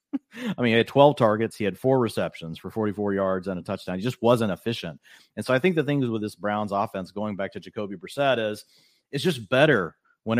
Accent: American